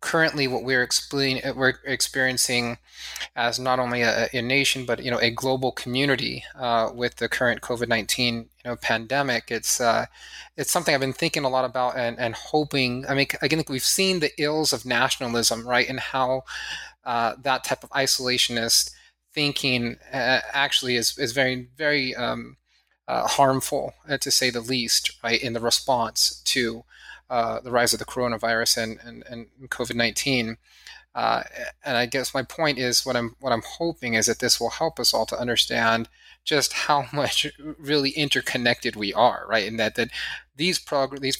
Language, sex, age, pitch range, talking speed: English, male, 20-39, 115-140 Hz, 175 wpm